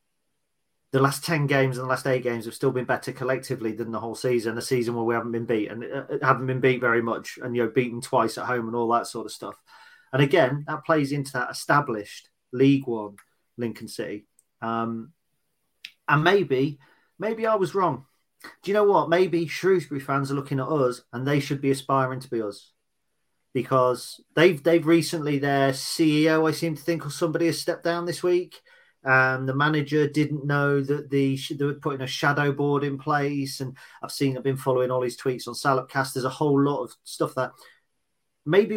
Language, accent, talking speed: English, British, 205 wpm